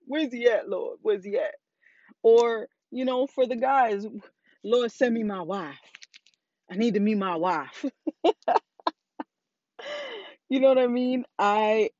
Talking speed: 150 wpm